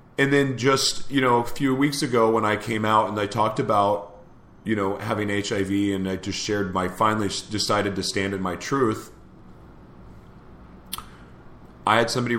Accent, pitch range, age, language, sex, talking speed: American, 90-110 Hz, 40-59, English, male, 175 wpm